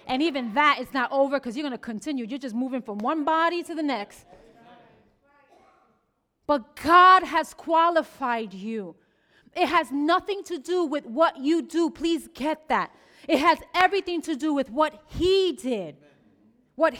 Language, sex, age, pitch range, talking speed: English, female, 30-49, 245-325 Hz, 165 wpm